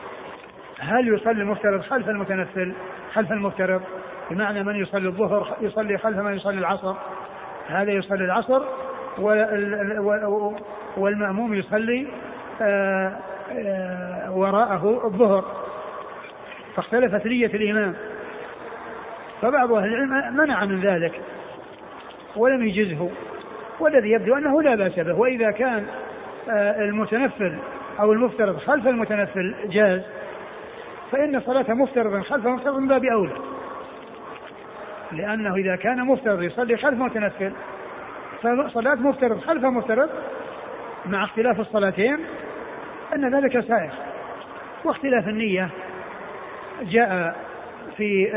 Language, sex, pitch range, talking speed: Arabic, male, 195-255 Hz, 95 wpm